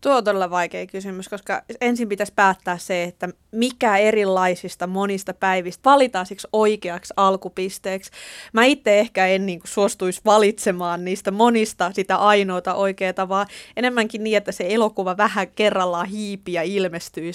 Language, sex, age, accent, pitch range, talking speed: Finnish, female, 20-39, native, 185-215 Hz, 145 wpm